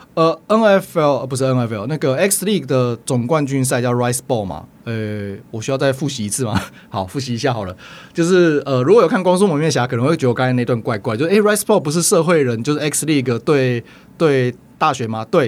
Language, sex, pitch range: Chinese, male, 120-150 Hz